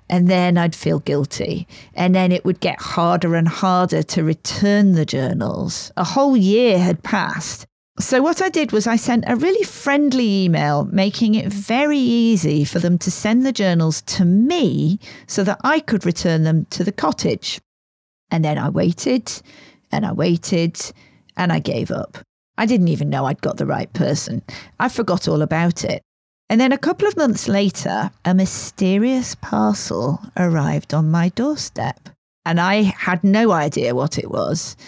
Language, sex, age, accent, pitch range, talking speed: English, female, 40-59, British, 165-225 Hz, 175 wpm